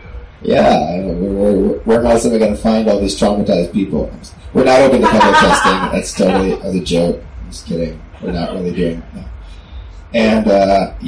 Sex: male